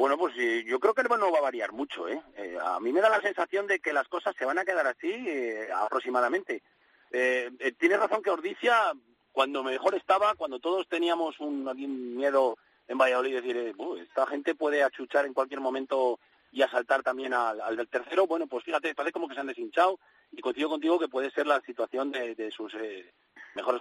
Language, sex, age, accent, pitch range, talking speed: Spanish, male, 40-59, Spanish, 125-190 Hz, 215 wpm